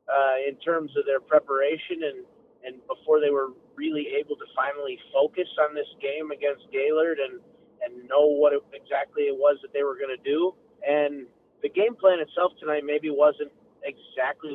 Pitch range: 140-205 Hz